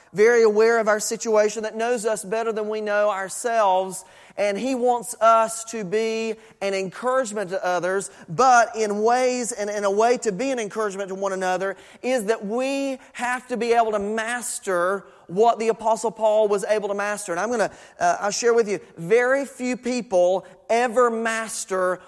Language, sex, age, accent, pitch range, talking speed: English, male, 30-49, American, 200-240 Hz, 185 wpm